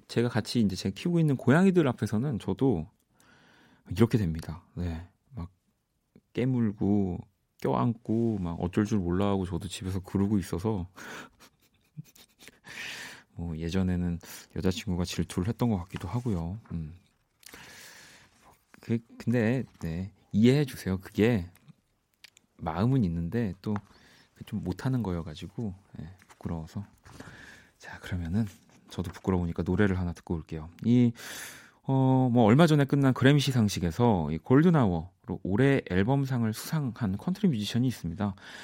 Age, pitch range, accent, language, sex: 30-49, 90-125 Hz, native, Korean, male